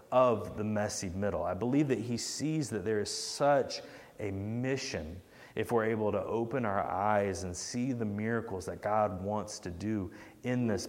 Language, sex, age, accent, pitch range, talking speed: English, male, 30-49, American, 105-135 Hz, 180 wpm